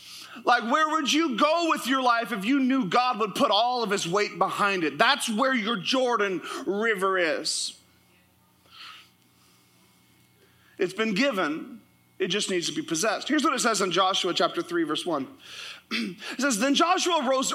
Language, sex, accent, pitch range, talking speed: English, male, American, 210-300 Hz, 170 wpm